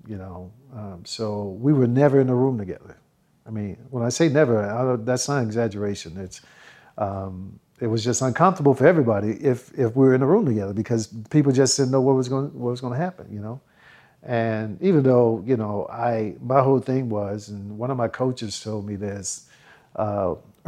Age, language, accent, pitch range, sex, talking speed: 50-69, English, American, 105-130 Hz, male, 210 wpm